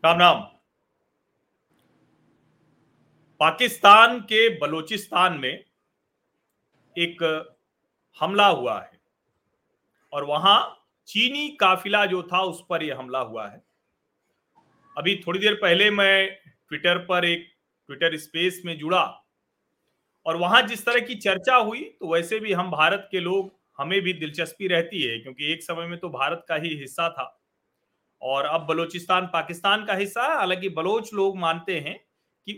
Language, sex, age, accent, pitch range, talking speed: Hindi, male, 40-59, native, 165-220 Hz, 135 wpm